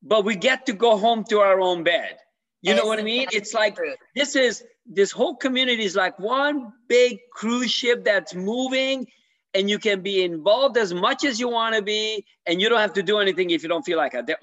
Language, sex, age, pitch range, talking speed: English, male, 50-69, 185-255 Hz, 230 wpm